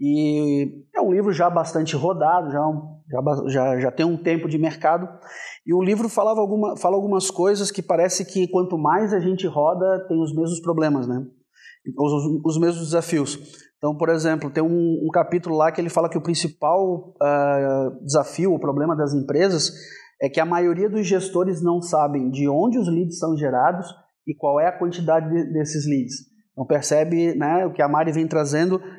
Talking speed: 190 wpm